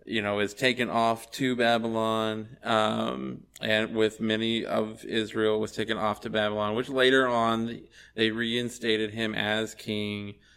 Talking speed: 150 wpm